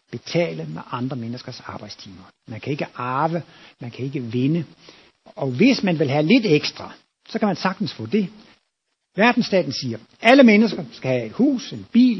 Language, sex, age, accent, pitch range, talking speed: Danish, male, 60-79, native, 135-195 Hz, 175 wpm